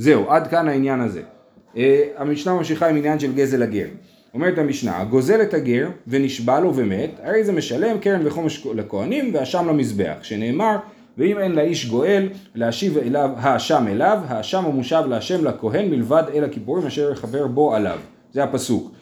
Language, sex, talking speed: Hebrew, male, 165 wpm